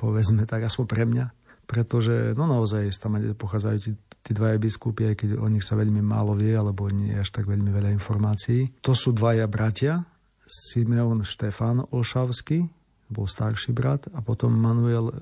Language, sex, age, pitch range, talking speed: Slovak, male, 40-59, 110-120 Hz, 170 wpm